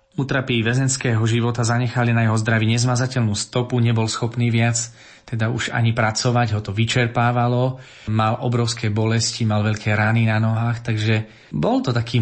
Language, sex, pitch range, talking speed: Slovak, male, 110-125 Hz, 150 wpm